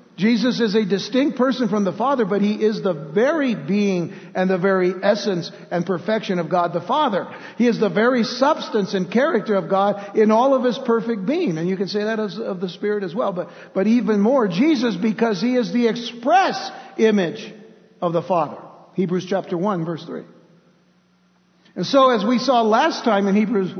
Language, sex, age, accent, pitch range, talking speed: English, male, 60-79, American, 190-235 Hz, 195 wpm